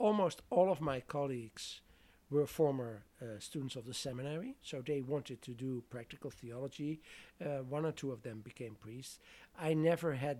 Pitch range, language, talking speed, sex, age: 130-165 Hz, English, 175 wpm, male, 60-79